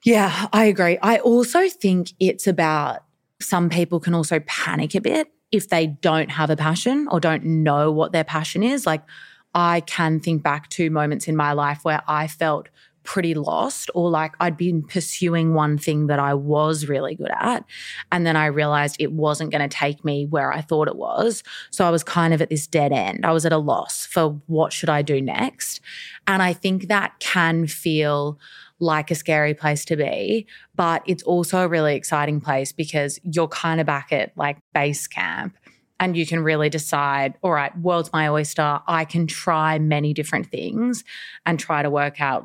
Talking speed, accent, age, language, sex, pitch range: 200 wpm, Australian, 20-39, English, female, 150-175 Hz